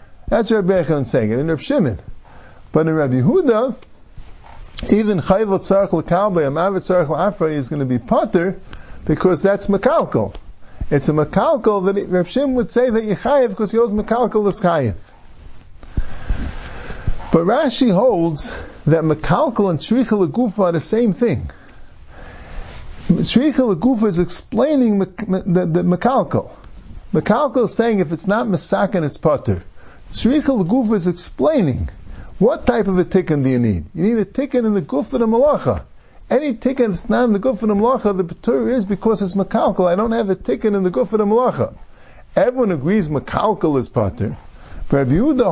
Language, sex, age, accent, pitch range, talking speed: English, male, 50-69, American, 160-230 Hz, 155 wpm